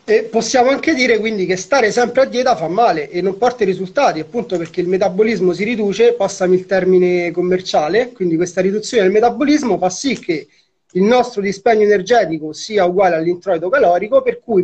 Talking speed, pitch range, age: 185 wpm, 180-240 Hz, 30-49